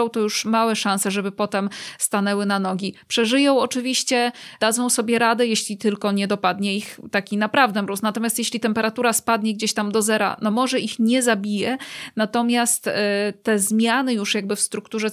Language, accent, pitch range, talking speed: Polish, native, 200-225 Hz, 165 wpm